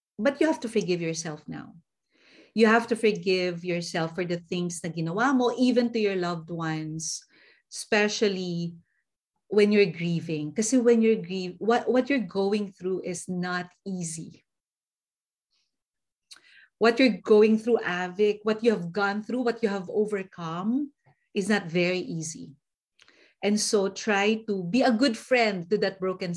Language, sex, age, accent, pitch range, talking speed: Filipino, female, 40-59, native, 180-240 Hz, 155 wpm